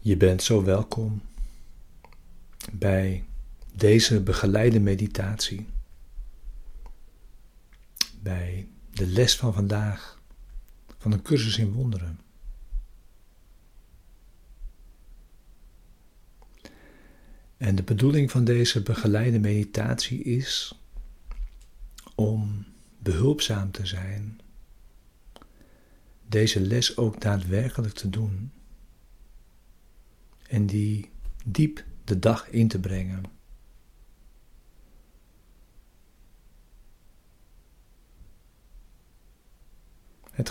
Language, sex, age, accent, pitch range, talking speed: Dutch, male, 60-79, Dutch, 85-110 Hz, 65 wpm